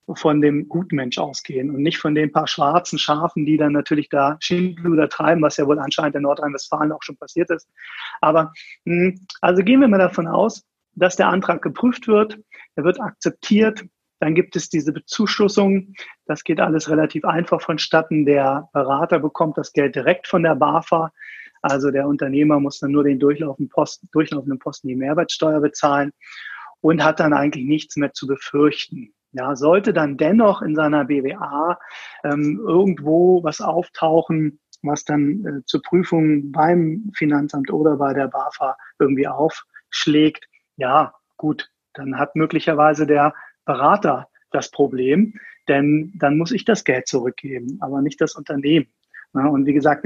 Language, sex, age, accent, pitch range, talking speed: German, male, 30-49, German, 145-170 Hz, 160 wpm